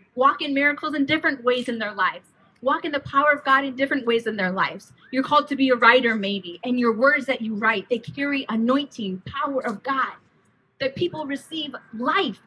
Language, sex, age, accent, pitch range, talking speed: English, female, 30-49, American, 220-280 Hz, 210 wpm